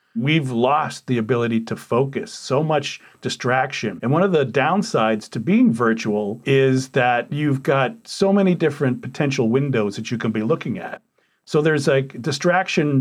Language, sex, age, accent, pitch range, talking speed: English, male, 40-59, American, 125-175 Hz, 170 wpm